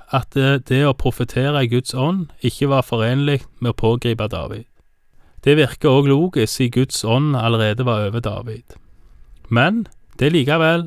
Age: 30-49